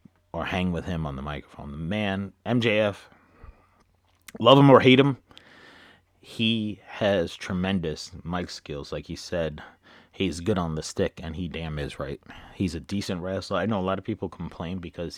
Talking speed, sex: 180 wpm, male